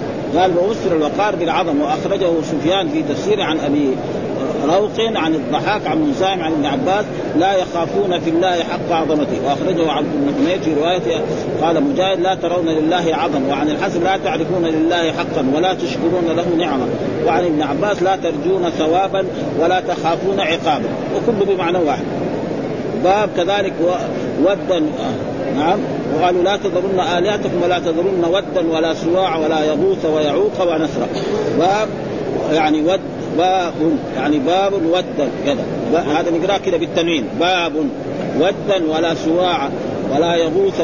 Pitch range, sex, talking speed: 160-190 Hz, male, 135 wpm